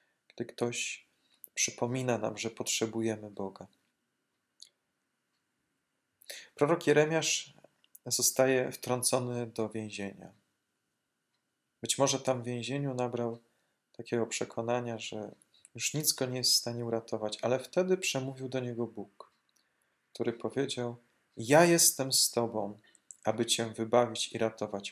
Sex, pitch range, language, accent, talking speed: male, 110-135 Hz, Polish, native, 115 wpm